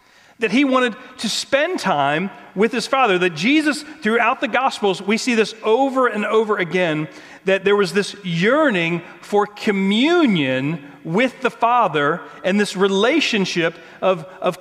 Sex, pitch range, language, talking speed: male, 170-225 Hz, English, 150 wpm